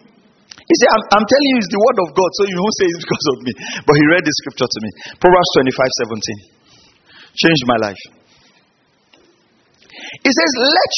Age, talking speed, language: 40-59, 190 wpm, English